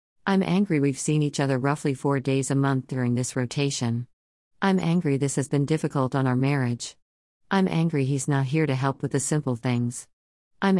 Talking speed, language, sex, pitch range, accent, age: 195 wpm, English, female, 130-160 Hz, American, 50-69